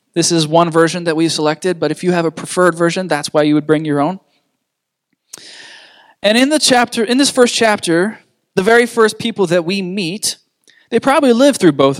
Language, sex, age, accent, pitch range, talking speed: English, male, 20-39, American, 140-195 Hz, 195 wpm